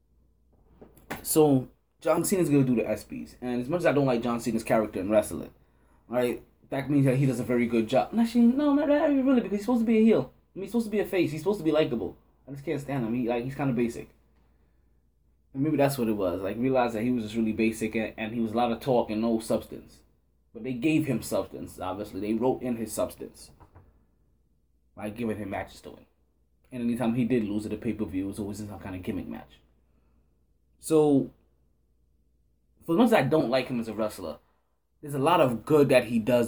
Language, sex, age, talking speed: English, male, 20-39, 240 wpm